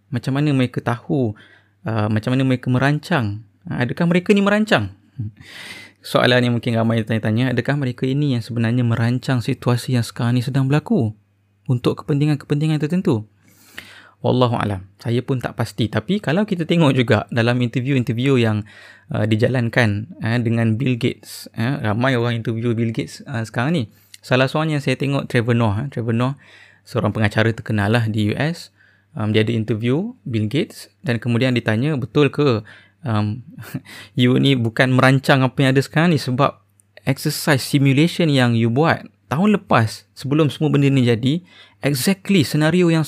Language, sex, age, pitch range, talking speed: Malay, male, 20-39, 110-145 Hz, 160 wpm